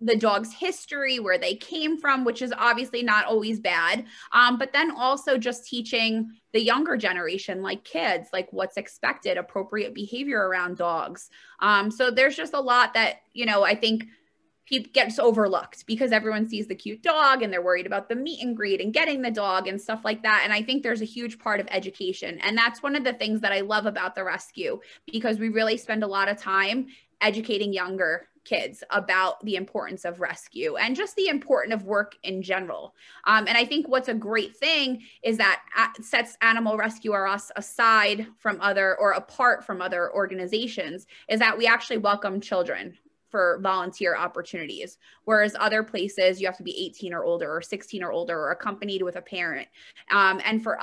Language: English